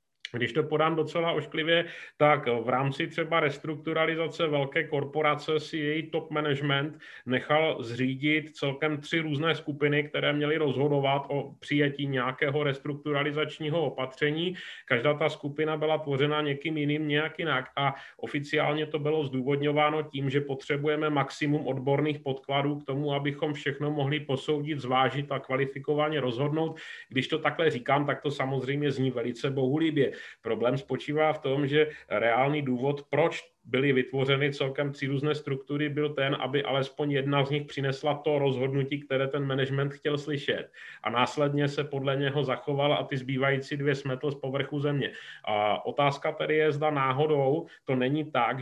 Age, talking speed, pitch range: 30-49, 150 wpm, 135-150 Hz